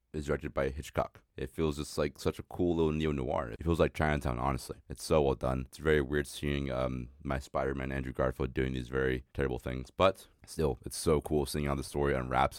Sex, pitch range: male, 65-70 Hz